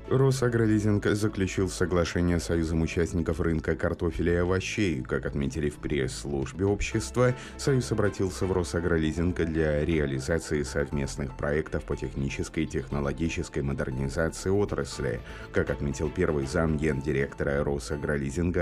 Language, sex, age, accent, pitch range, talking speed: Russian, male, 30-49, native, 75-95 Hz, 115 wpm